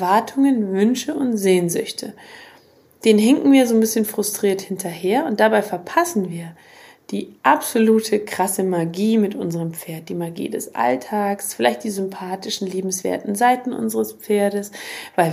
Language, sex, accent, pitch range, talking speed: German, female, German, 180-225 Hz, 140 wpm